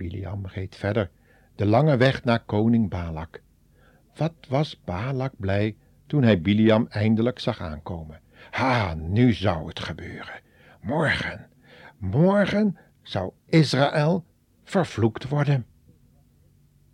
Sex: male